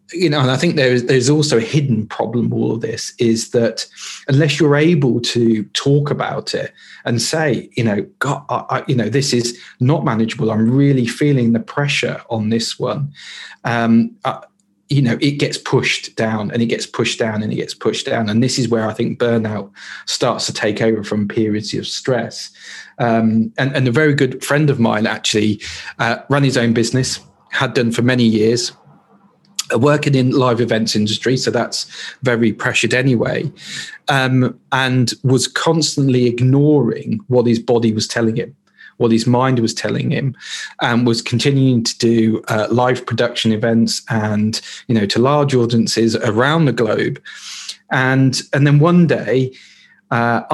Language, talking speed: English, 175 wpm